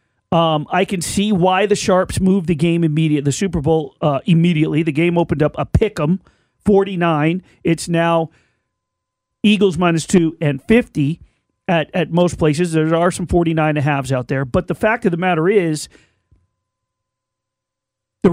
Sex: male